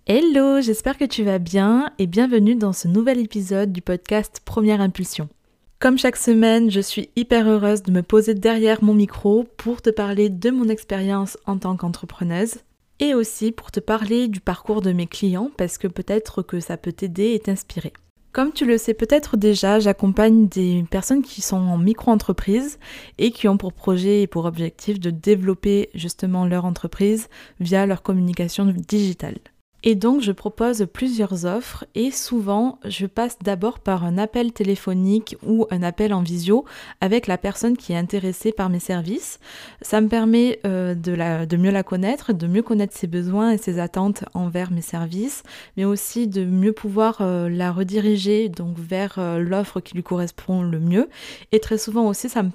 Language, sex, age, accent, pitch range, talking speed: French, female, 20-39, French, 185-220 Hz, 180 wpm